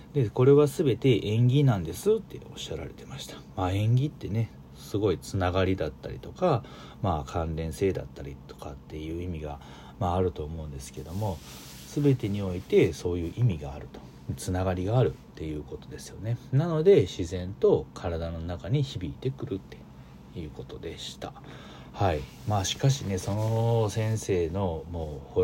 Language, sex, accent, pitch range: Japanese, male, native, 75-110 Hz